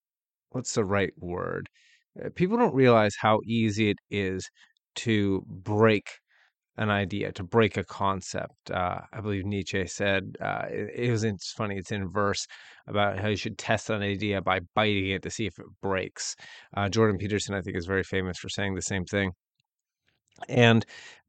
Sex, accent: male, American